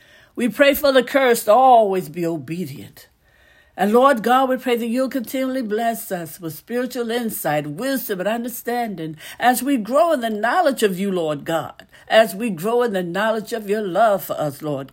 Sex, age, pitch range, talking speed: female, 60-79, 185-260 Hz, 190 wpm